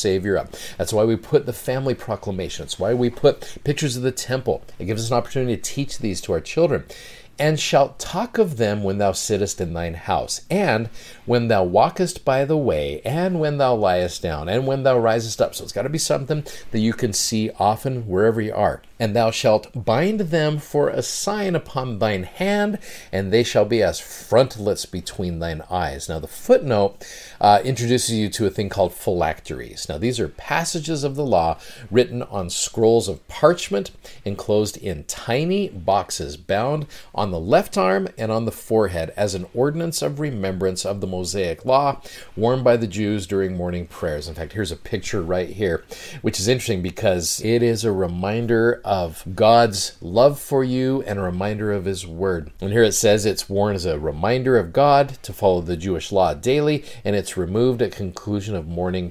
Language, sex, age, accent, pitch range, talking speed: English, male, 50-69, American, 95-130 Hz, 195 wpm